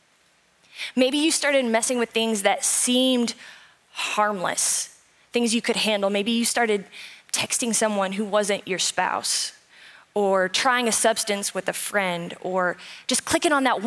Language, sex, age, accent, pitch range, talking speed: English, female, 10-29, American, 220-285 Hz, 145 wpm